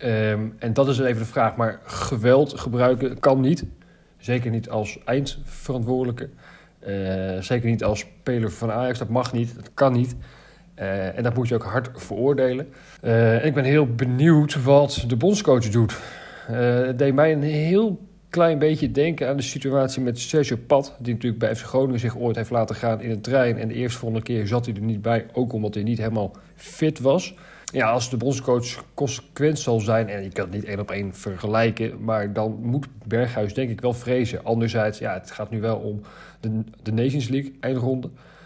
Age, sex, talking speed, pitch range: 40-59, male, 200 wpm, 110-135 Hz